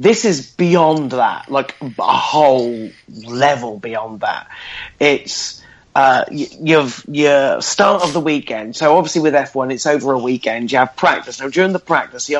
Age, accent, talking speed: 30-49, British, 170 wpm